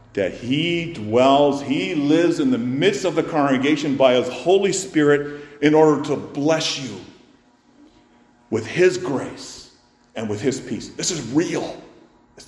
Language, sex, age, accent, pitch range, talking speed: English, male, 50-69, American, 95-140 Hz, 150 wpm